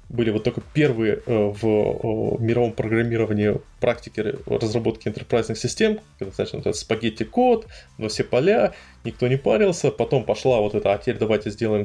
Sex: male